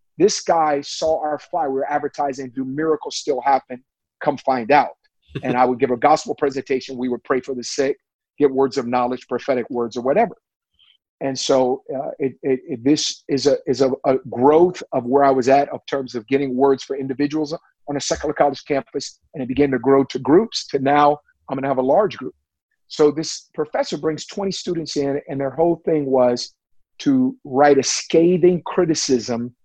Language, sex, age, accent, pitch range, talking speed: English, male, 40-59, American, 130-160 Hz, 190 wpm